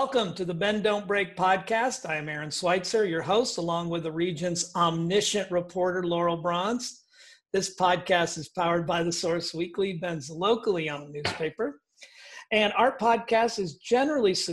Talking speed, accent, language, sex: 160 wpm, American, English, male